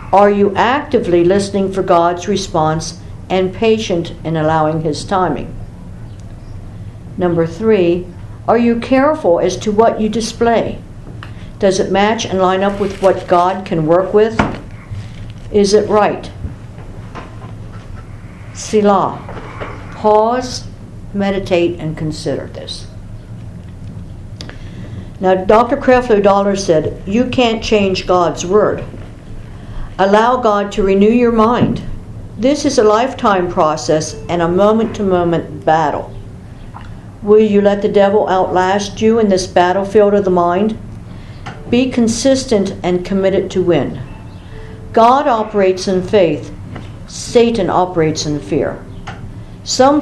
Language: English